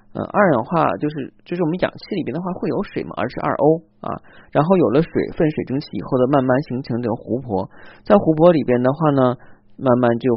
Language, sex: Chinese, male